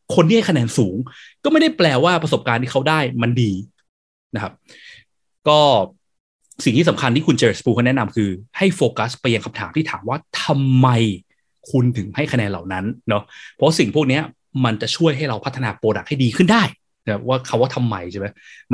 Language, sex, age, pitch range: Thai, male, 20-39, 115-155 Hz